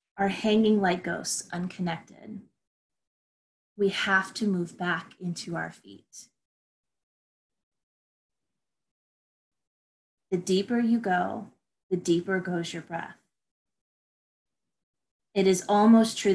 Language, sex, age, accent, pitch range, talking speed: English, female, 20-39, American, 175-205 Hz, 95 wpm